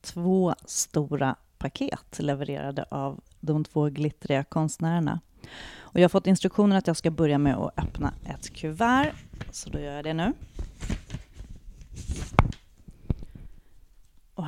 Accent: native